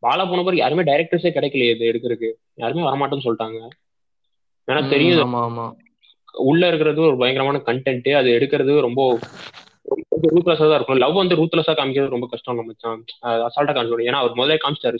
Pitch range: 115-150 Hz